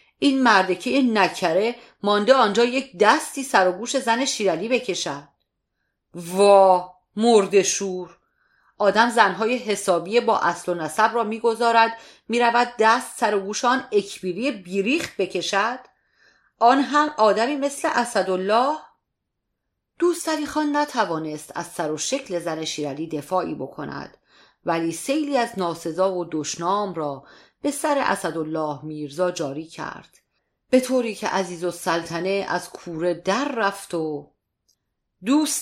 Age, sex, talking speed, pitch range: 40-59, female, 125 wpm, 180-255 Hz